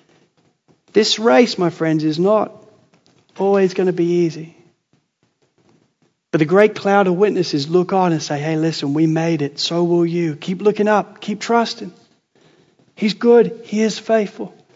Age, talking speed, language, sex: 40-59, 160 wpm, English, male